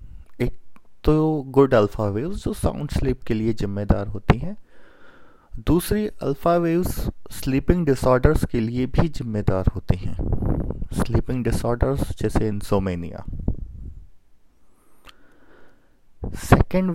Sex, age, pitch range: male, 30-49, 100-140 Hz